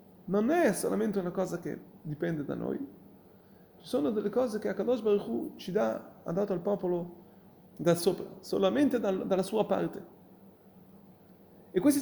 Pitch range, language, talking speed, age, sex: 175-210 Hz, Italian, 145 wpm, 30-49, male